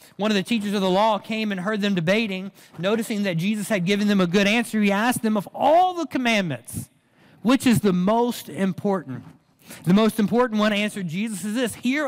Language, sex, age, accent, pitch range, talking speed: English, male, 40-59, American, 160-210 Hz, 210 wpm